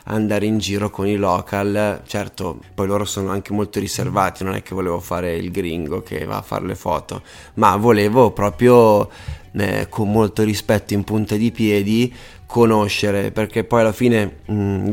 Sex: male